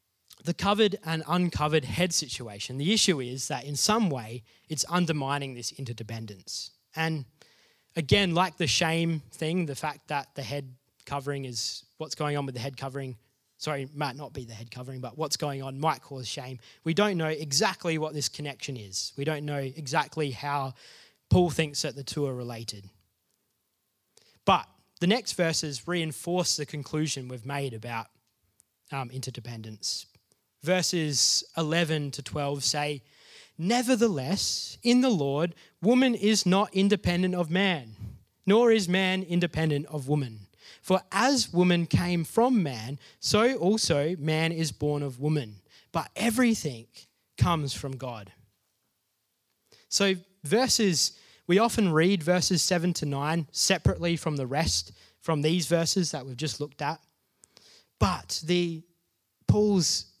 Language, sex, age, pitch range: English, male, 20-39, 130-175 Hz